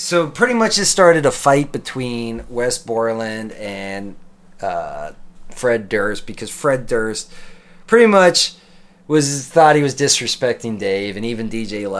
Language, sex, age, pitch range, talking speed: English, male, 30-49, 115-160 Hz, 140 wpm